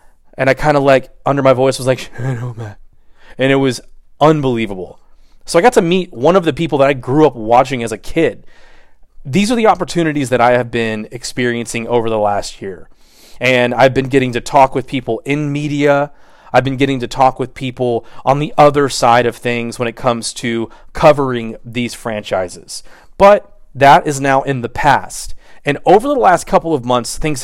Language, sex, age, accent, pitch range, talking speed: English, male, 30-49, American, 120-155 Hz, 195 wpm